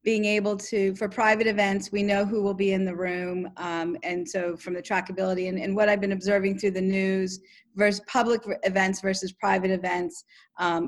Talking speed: 200 wpm